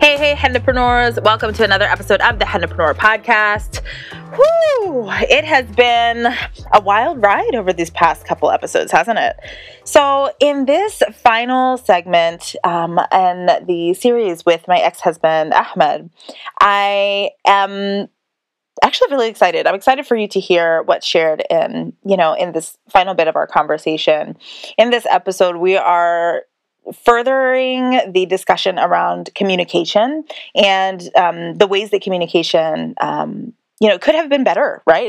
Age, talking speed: 20-39, 145 wpm